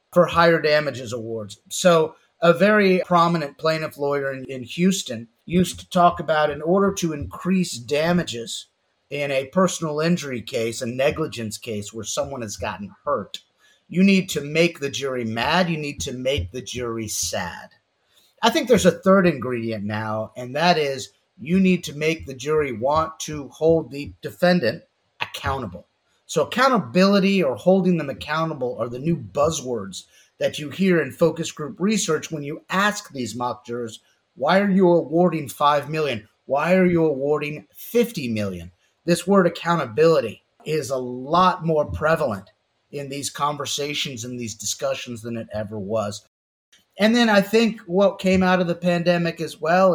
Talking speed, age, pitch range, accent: 160 wpm, 30-49, 125-180 Hz, American